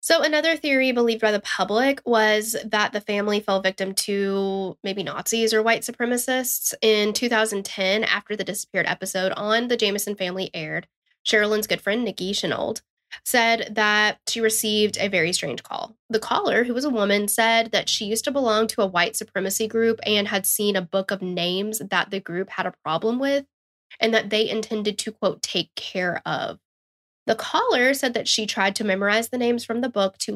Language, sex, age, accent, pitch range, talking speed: English, female, 10-29, American, 195-230 Hz, 190 wpm